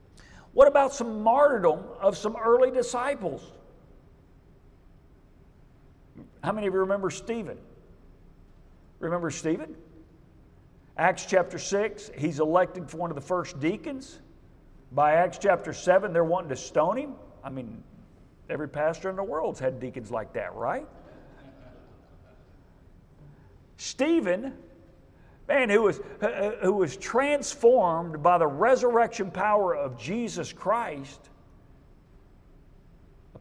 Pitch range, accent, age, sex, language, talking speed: 155-230 Hz, American, 50-69, male, English, 115 wpm